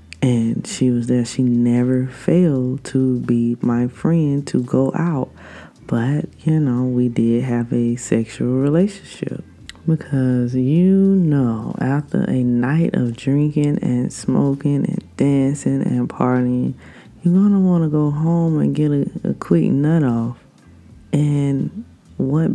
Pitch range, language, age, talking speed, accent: 120-155 Hz, English, 20-39, 140 wpm, American